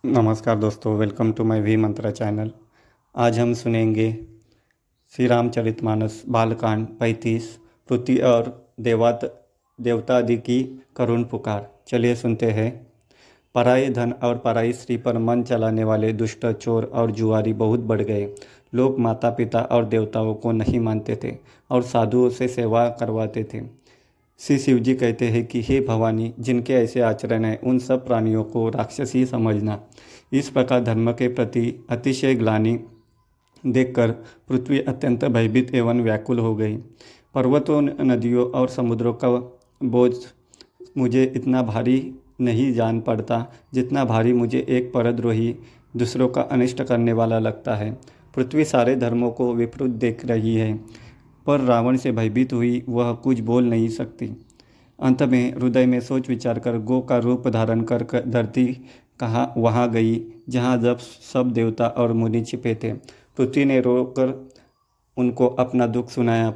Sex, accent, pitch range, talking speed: male, native, 115-125 Hz, 145 wpm